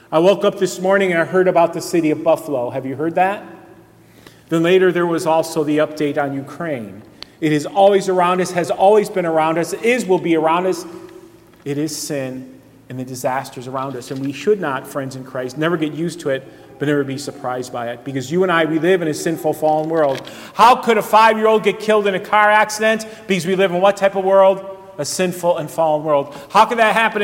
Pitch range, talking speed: 150-195 Hz, 230 wpm